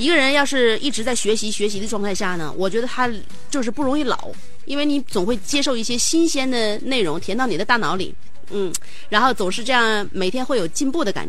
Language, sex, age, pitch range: Chinese, female, 30-49, 190-260 Hz